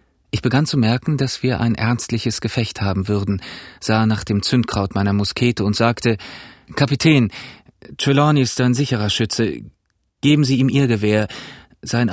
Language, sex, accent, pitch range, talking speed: German, male, German, 105-120 Hz, 155 wpm